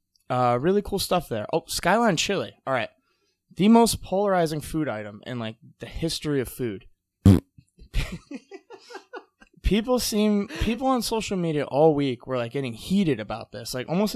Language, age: English, 20-39